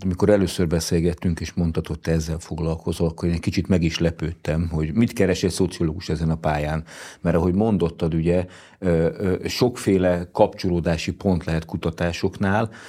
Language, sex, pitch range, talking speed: Hungarian, male, 85-100 Hz, 150 wpm